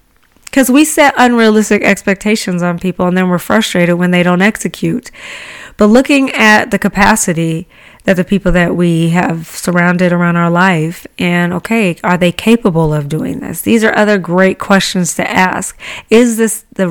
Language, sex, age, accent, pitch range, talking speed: English, female, 30-49, American, 175-205 Hz, 170 wpm